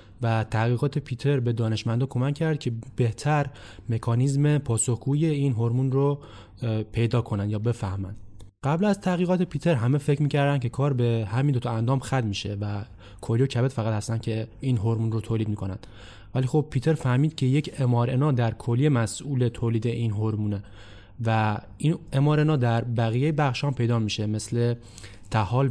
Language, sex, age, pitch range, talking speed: Persian, male, 20-39, 110-135 Hz, 160 wpm